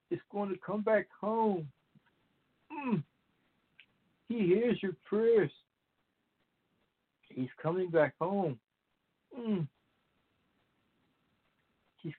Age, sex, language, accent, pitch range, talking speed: 60-79, male, English, American, 150-195 Hz, 85 wpm